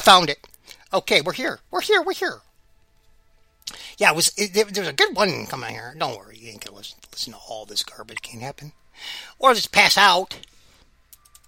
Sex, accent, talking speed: male, American, 220 wpm